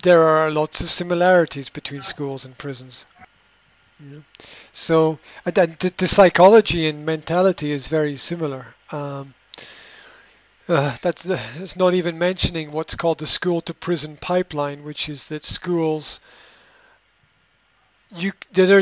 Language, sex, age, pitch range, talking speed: English, male, 40-59, 150-185 Hz, 120 wpm